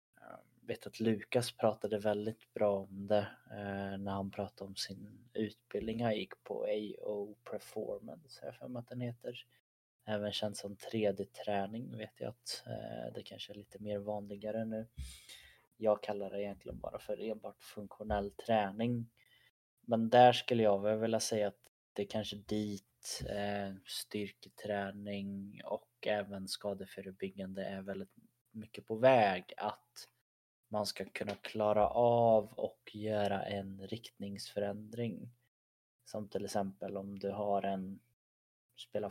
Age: 20-39